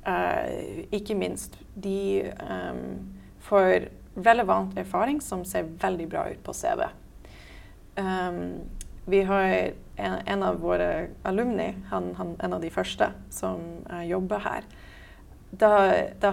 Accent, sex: Swedish, female